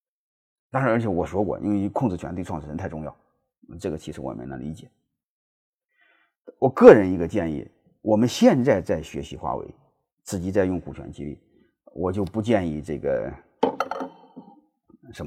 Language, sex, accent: Chinese, male, native